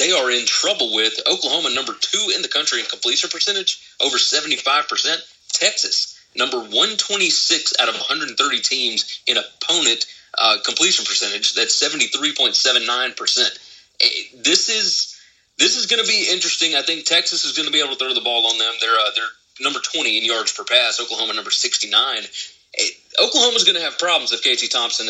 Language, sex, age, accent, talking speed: English, male, 30-49, American, 170 wpm